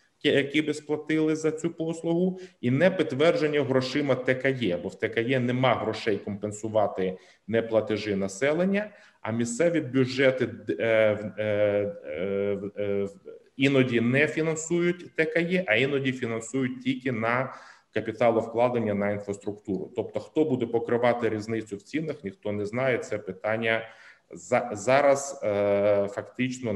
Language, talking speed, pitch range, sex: Ukrainian, 110 wpm, 110-135 Hz, male